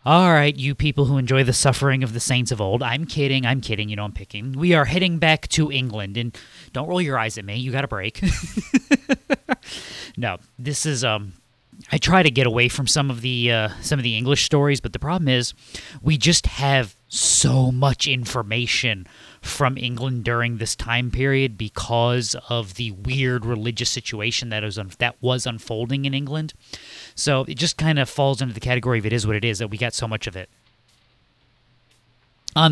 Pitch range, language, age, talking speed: 115-145 Hz, English, 30-49, 195 wpm